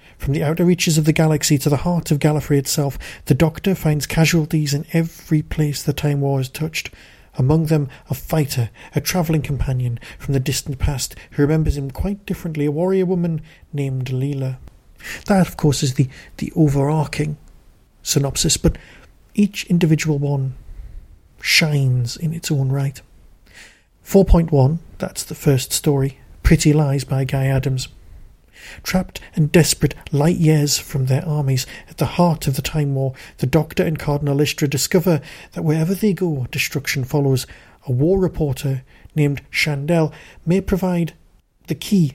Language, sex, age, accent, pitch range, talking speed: English, male, 50-69, British, 135-165 Hz, 155 wpm